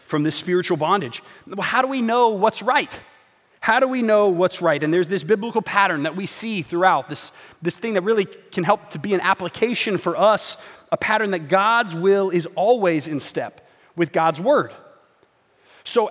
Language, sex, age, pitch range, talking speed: English, male, 30-49, 165-220 Hz, 195 wpm